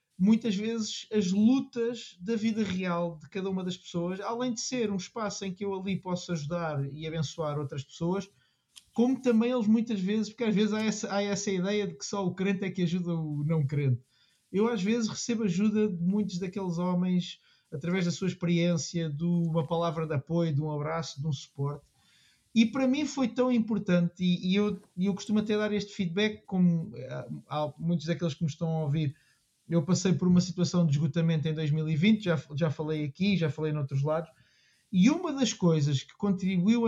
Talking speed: 195 wpm